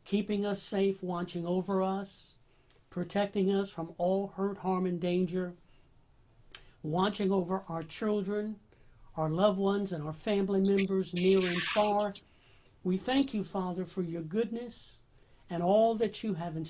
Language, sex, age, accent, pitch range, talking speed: English, male, 60-79, American, 165-205 Hz, 145 wpm